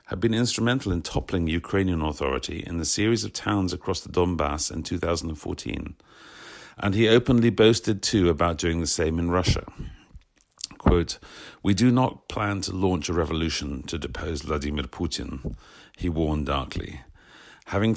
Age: 50-69